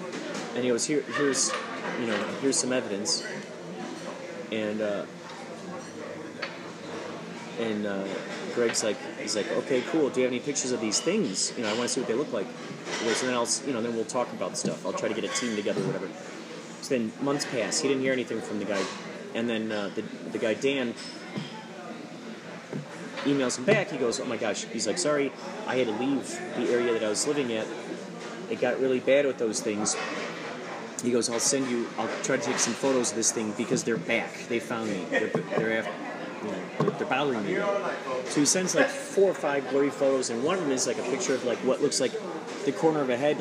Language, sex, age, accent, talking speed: English, male, 30-49, American, 225 wpm